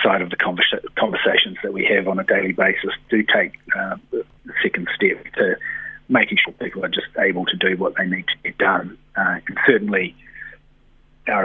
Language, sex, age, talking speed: English, male, 30-49, 190 wpm